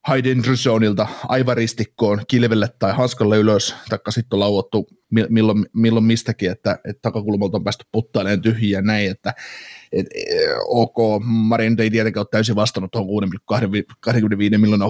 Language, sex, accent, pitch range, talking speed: Finnish, male, native, 105-120 Hz, 115 wpm